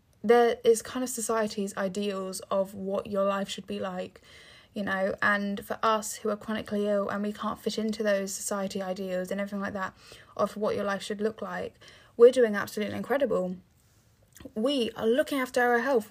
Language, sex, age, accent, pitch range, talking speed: English, female, 10-29, British, 195-220 Hz, 190 wpm